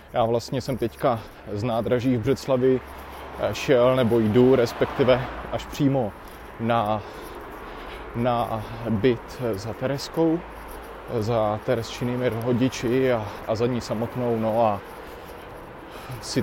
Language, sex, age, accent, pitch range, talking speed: Czech, male, 20-39, native, 110-130 Hz, 110 wpm